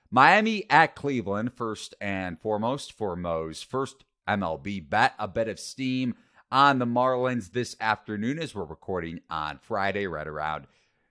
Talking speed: 145 wpm